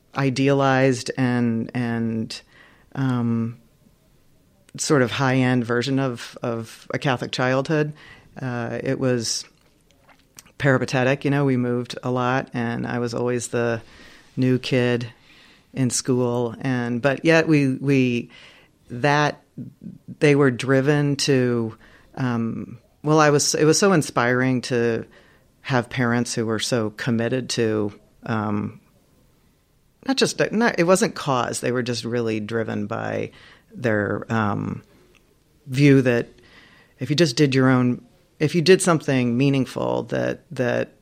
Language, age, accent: English, 40-59, American